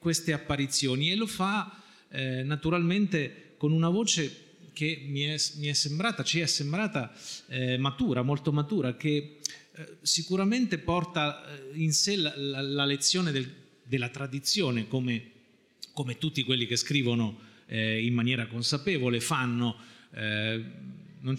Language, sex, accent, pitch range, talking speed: Italian, male, native, 125-160 Hz, 140 wpm